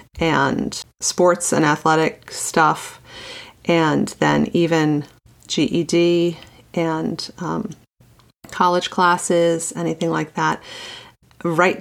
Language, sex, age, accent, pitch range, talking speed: English, female, 30-49, American, 160-190 Hz, 85 wpm